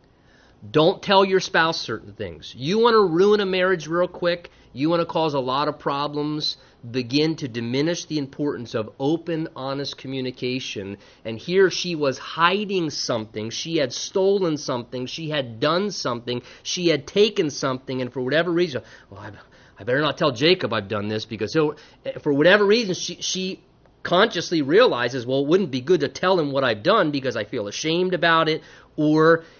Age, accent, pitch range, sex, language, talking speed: 30-49, American, 130-170 Hz, male, English, 180 wpm